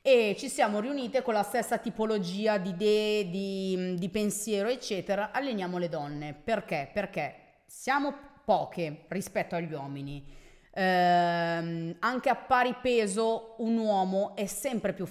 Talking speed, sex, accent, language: 135 wpm, female, native, Italian